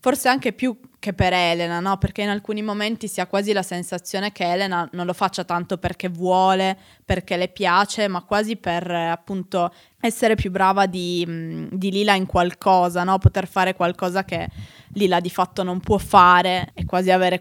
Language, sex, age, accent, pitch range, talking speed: Italian, female, 20-39, native, 180-200 Hz, 185 wpm